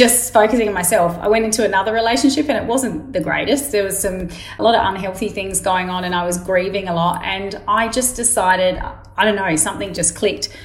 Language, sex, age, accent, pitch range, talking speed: English, female, 30-49, Australian, 185-225 Hz, 225 wpm